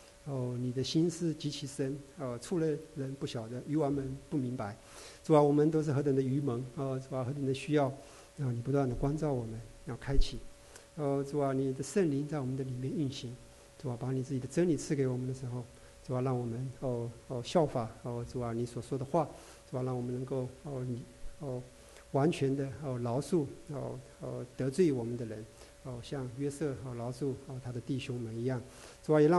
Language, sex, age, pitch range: English, male, 50-69, 125-150 Hz